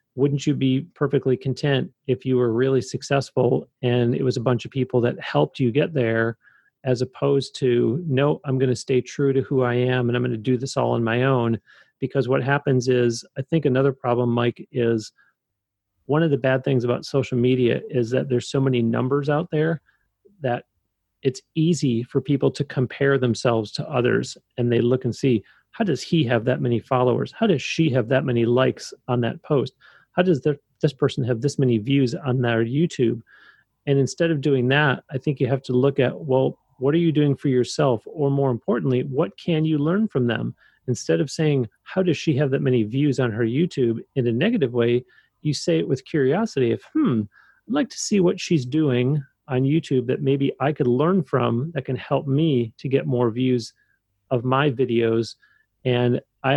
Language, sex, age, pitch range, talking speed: English, male, 40-59, 120-145 Hz, 205 wpm